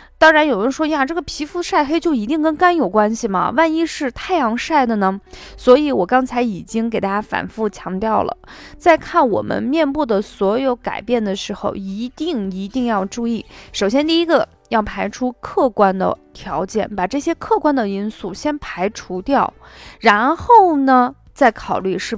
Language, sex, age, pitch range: Chinese, female, 20-39, 205-290 Hz